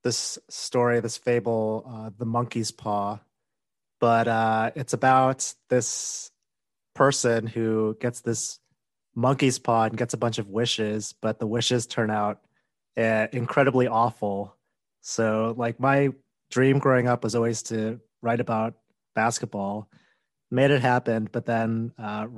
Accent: American